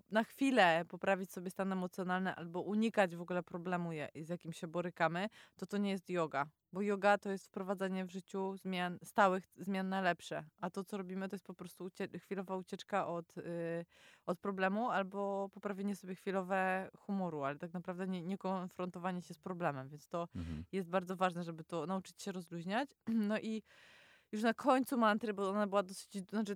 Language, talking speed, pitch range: Polish, 185 wpm, 180-205 Hz